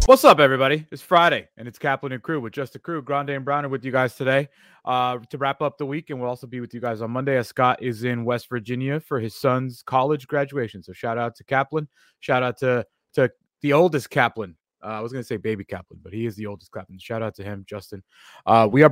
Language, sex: English, male